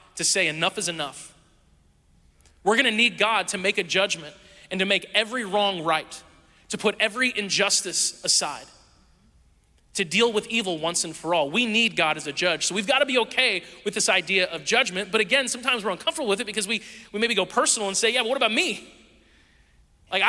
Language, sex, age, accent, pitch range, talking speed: English, male, 30-49, American, 160-220 Hz, 205 wpm